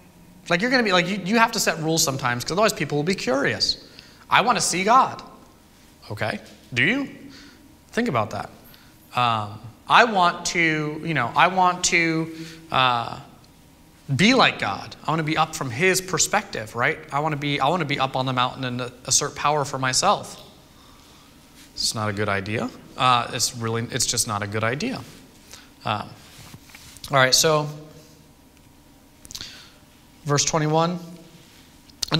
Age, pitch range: 30-49, 125-180 Hz